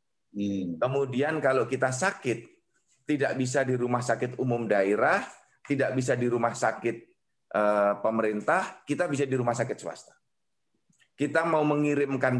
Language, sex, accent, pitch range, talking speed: Indonesian, male, native, 110-140 Hz, 125 wpm